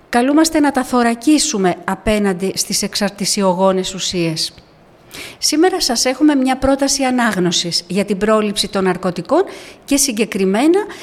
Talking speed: 115 wpm